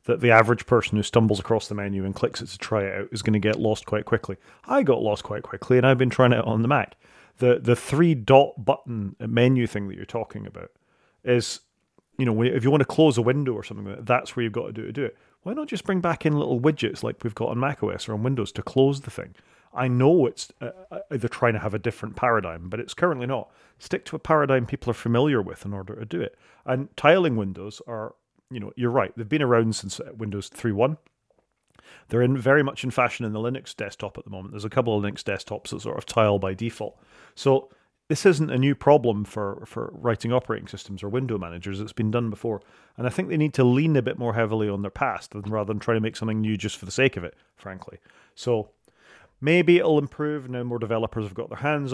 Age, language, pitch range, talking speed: 30-49, English, 105-130 Hz, 245 wpm